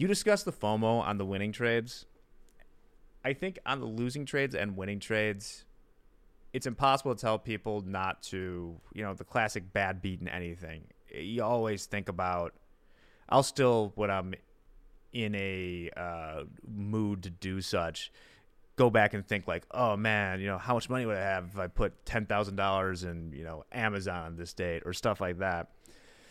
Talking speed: 175 wpm